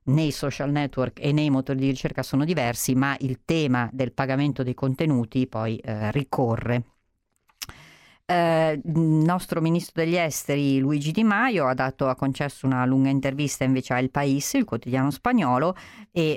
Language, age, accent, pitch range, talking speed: Italian, 40-59, native, 120-145 Hz, 160 wpm